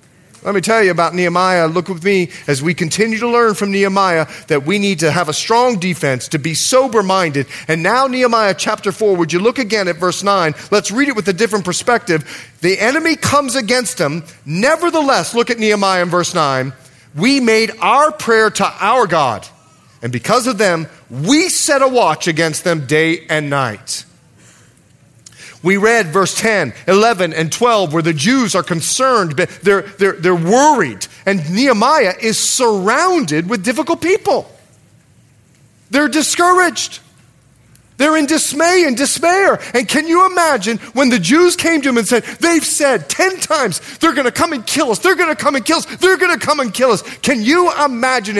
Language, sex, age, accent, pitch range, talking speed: English, male, 40-59, American, 170-270 Hz, 180 wpm